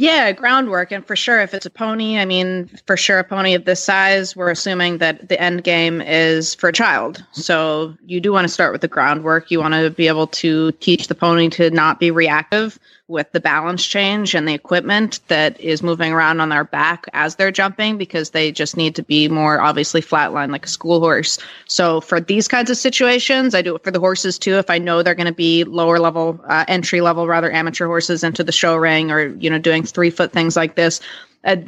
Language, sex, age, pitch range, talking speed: English, female, 20-39, 165-190 Hz, 230 wpm